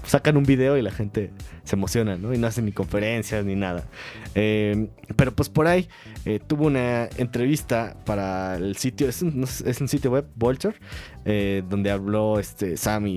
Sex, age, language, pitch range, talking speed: male, 20-39, Spanish, 105-140 Hz, 180 wpm